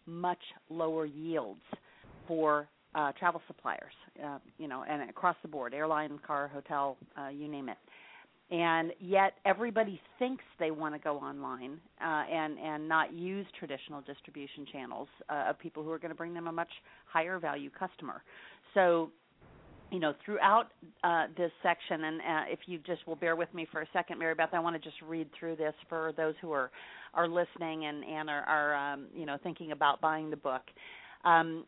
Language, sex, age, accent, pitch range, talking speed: English, female, 40-59, American, 150-175 Hz, 185 wpm